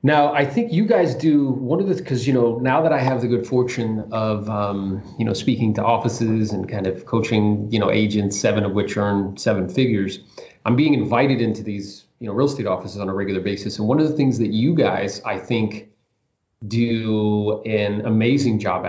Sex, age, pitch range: male, 30-49, 105-125 Hz